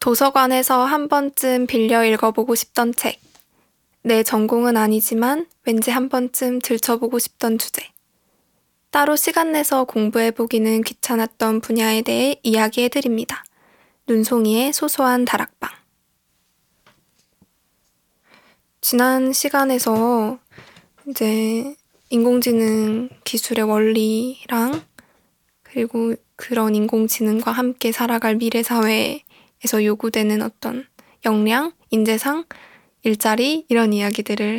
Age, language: 20-39, Korean